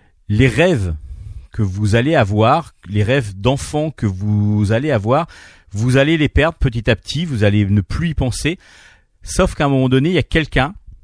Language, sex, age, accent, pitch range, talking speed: French, male, 40-59, French, 100-135 Hz, 190 wpm